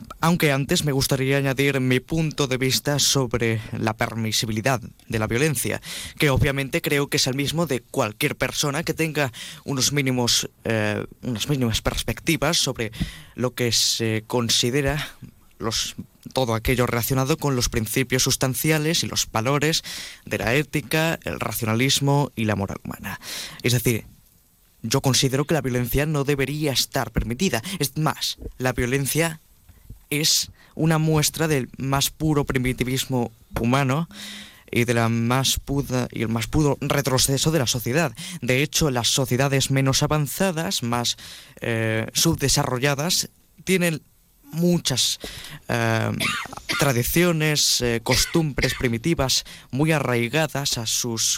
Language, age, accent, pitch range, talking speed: Spanish, 20-39, Spanish, 120-150 Hz, 130 wpm